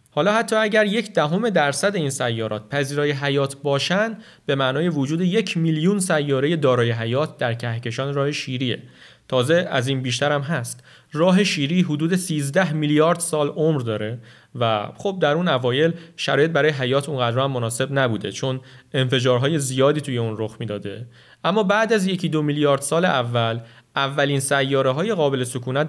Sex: male